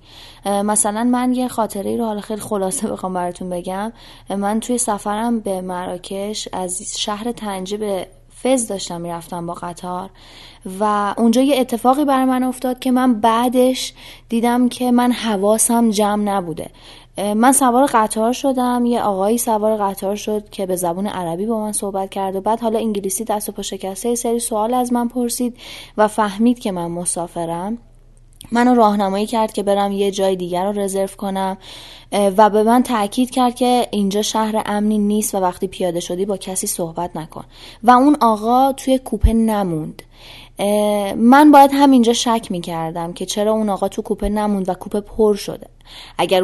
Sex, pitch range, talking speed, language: female, 190-230 Hz, 170 wpm, Persian